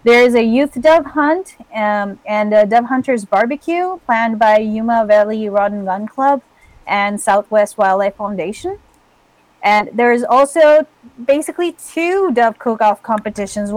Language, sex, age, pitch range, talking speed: English, female, 30-49, 210-255 Hz, 145 wpm